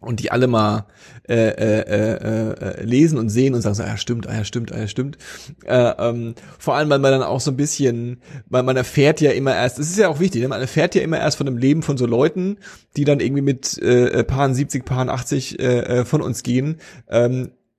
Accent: German